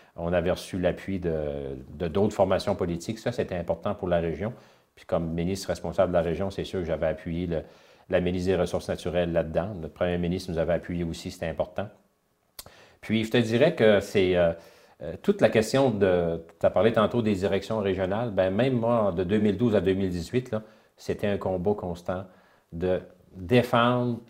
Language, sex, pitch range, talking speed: French, male, 90-120 Hz, 185 wpm